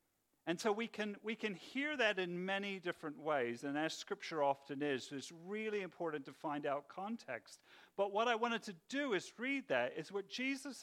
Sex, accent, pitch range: male, British, 155-225 Hz